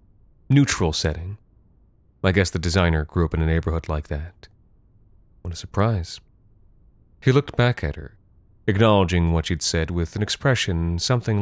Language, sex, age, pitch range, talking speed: English, male, 30-49, 85-105 Hz, 150 wpm